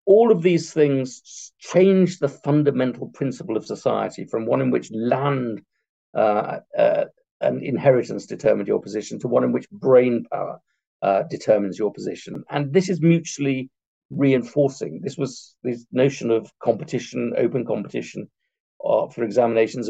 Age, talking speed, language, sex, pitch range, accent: 50-69, 145 wpm, Dutch, male, 120-160 Hz, British